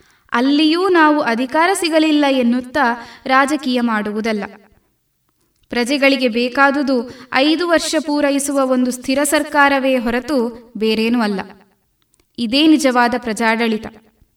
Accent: native